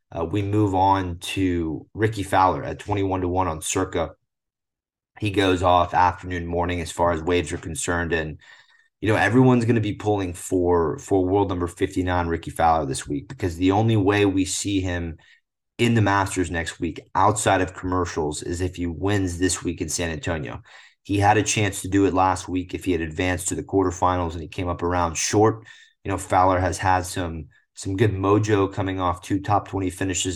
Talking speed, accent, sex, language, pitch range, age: 200 wpm, American, male, English, 90-100 Hz, 30-49